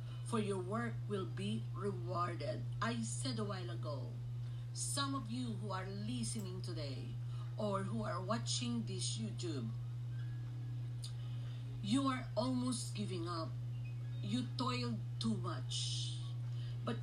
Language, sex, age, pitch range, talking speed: English, female, 50-69, 115-120 Hz, 120 wpm